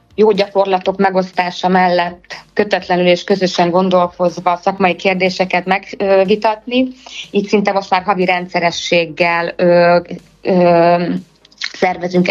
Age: 20-39